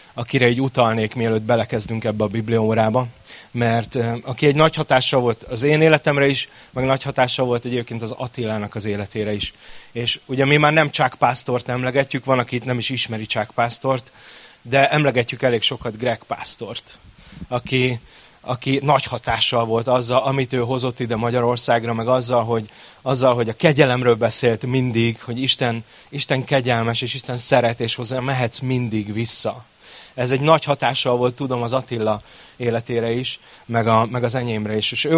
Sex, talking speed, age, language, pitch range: male, 165 wpm, 30-49, Hungarian, 115-135 Hz